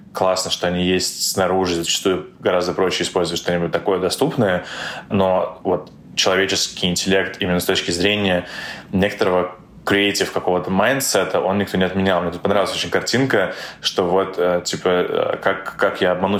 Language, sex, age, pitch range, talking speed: Russian, male, 20-39, 90-100 Hz, 145 wpm